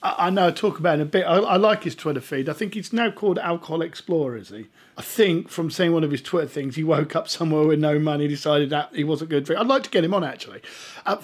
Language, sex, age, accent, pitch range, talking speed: English, male, 40-59, British, 155-195 Hz, 290 wpm